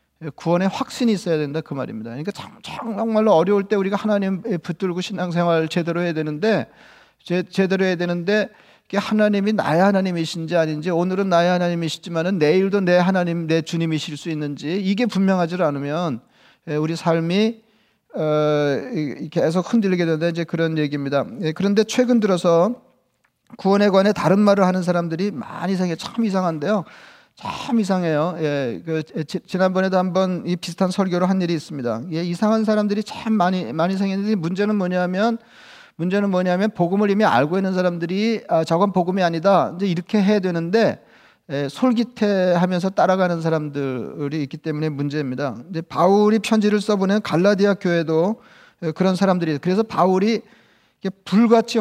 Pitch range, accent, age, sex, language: 165-205 Hz, native, 40-59, male, Korean